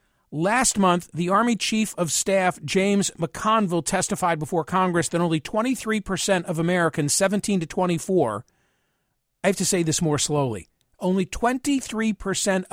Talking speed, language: 135 wpm, English